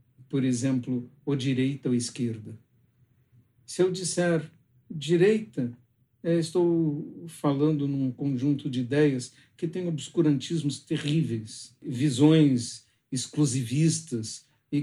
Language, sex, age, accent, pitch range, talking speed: Portuguese, male, 60-79, Brazilian, 125-150 Hz, 95 wpm